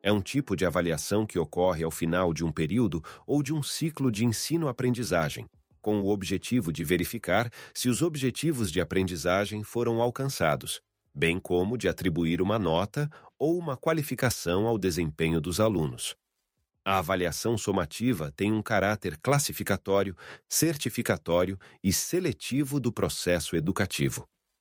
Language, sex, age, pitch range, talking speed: Portuguese, male, 40-59, 85-115 Hz, 135 wpm